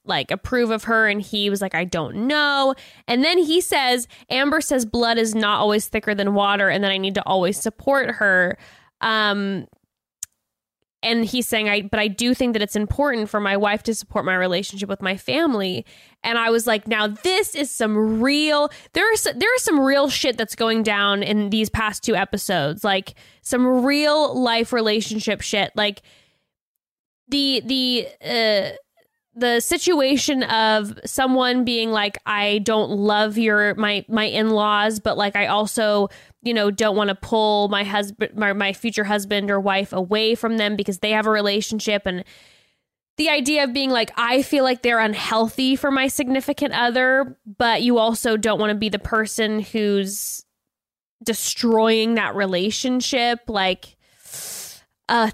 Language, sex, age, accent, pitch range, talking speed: English, female, 10-29, American, 205-250 Hz, 170 wpm